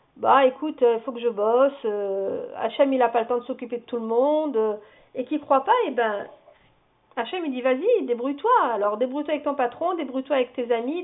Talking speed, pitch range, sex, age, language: 240 wpm, 255-320 Hz, female, 50-69, French